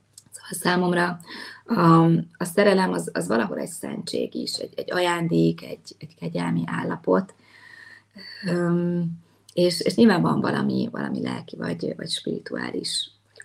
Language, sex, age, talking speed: Hungarian, female, 30-49, 135 wpm